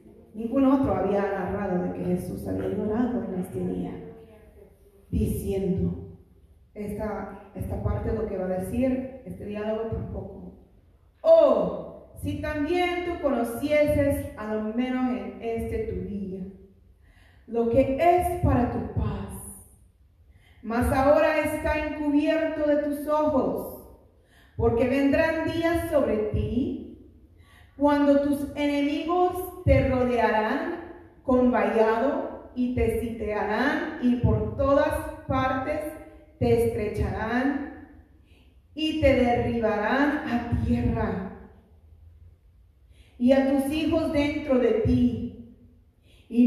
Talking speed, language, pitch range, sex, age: 110 wpm, Spanish, 190-285 Hz, female, 30-49